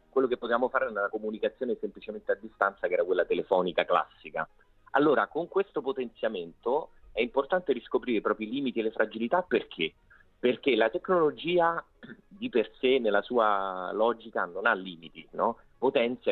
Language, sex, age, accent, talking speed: Italian, male, 40-59, native, 160 wpm